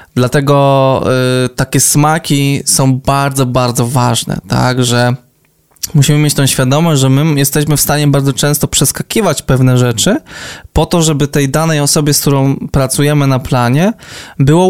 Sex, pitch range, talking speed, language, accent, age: male, 125-150 Hz, 145 wpm, Polish, native, 20-39